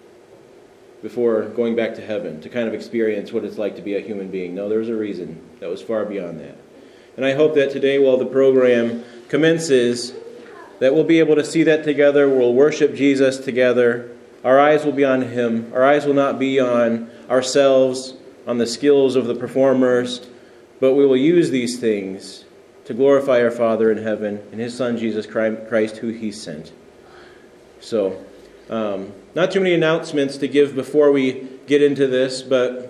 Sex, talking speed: male, 185 wpm